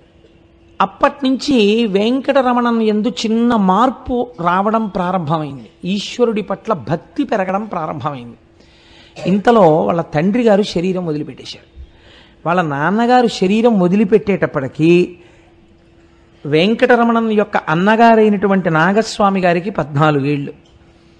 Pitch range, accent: 160-225 Hz, native